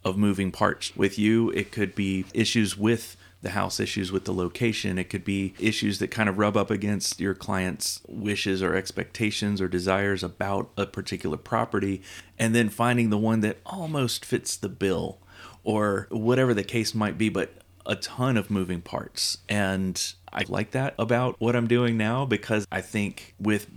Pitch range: 95-110 Hz